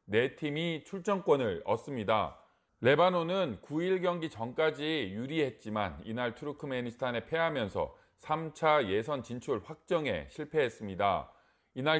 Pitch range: 130-170 Hz